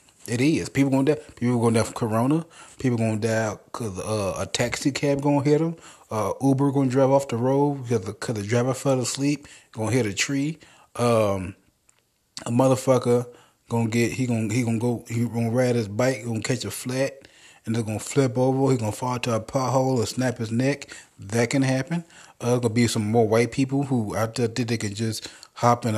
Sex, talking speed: male, 210 wpm